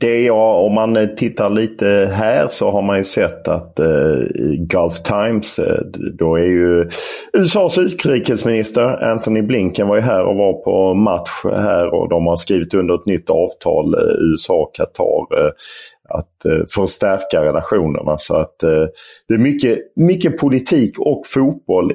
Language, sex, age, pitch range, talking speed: English, male, 40-59, 80-130 Hz, 155 wpm